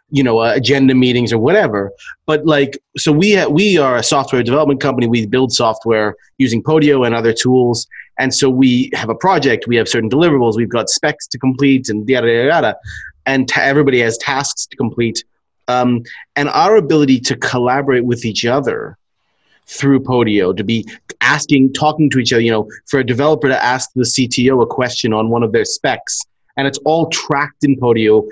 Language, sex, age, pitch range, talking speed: English, male, 30-49, 120-145 Hz, 190 wpm